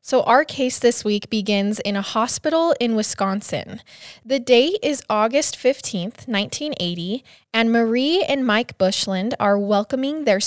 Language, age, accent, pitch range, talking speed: English, 20-39, American, 195-250 Hz, 145 wpm